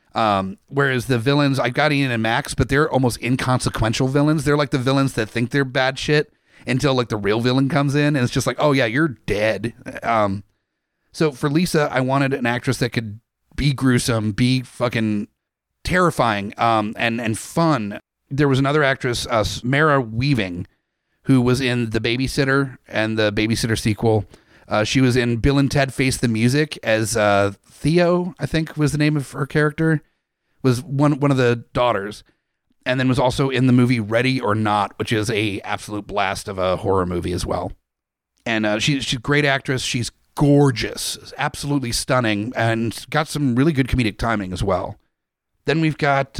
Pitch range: 110-140 Hz